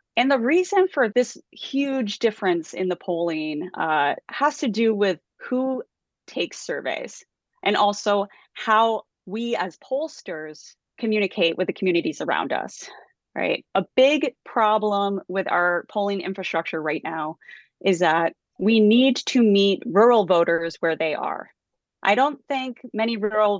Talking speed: 140 wpm